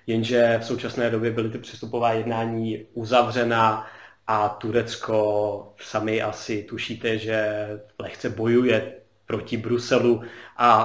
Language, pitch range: Czech, 115-130 Hz